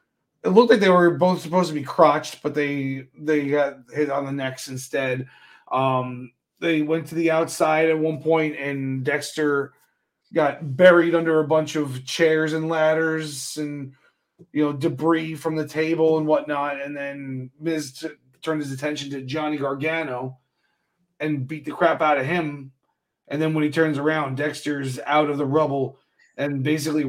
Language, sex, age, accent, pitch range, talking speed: English, male, 30-49, American, 140-165 Hz, 175 wpm